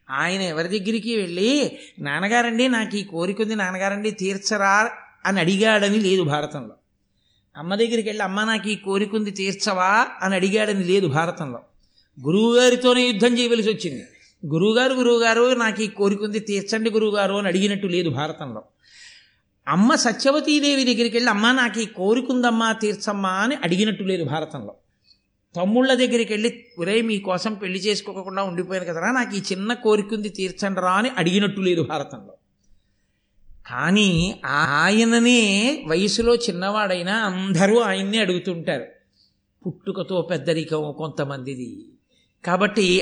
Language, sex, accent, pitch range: Telugu, male, native, 170-220 Hz